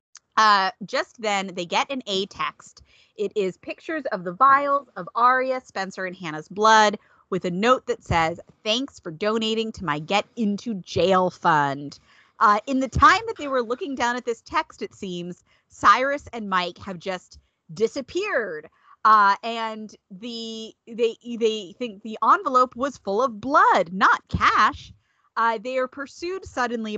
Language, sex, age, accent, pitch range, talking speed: English, female, 30-49, American, 195-255 Hz, 160 wpm